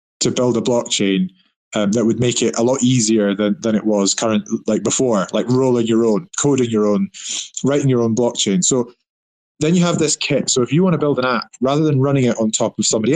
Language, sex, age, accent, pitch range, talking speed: English, male, 20-39, British, 105-130 Hz, 235 wpm